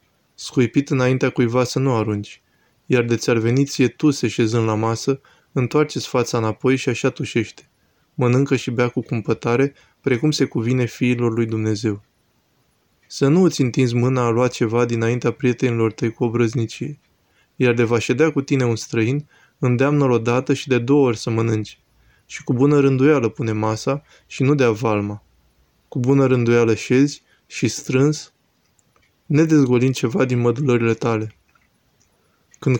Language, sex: Romanian, male